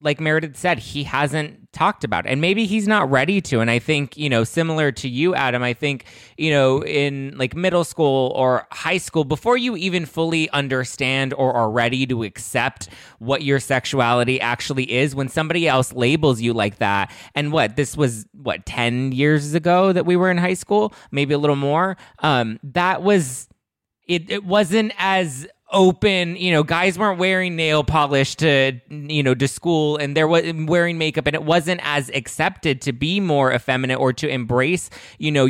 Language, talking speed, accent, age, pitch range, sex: English, 190 wpm, American, 20-39, 125-160 Hz, male